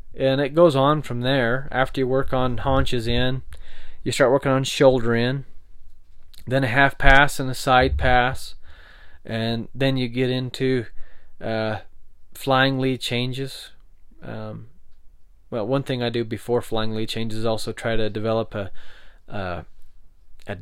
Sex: male